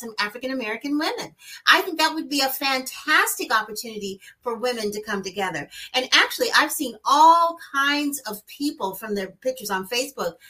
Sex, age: female, 40-59